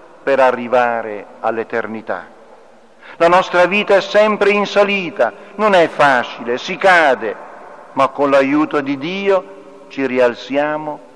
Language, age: Italian, 50-69